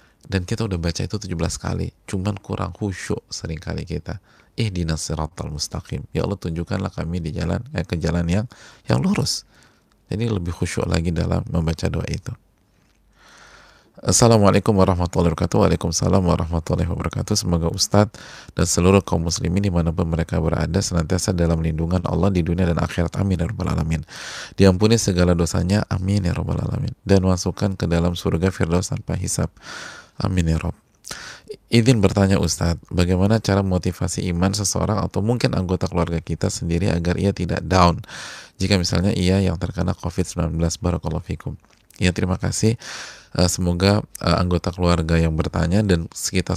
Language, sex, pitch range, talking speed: Indonesian, male, 85-95 Hz, 150 wpm